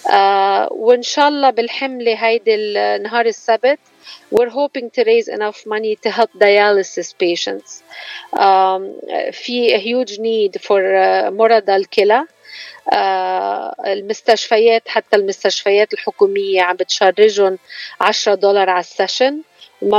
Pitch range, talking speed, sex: 190-245 Hz, 105 wpm, female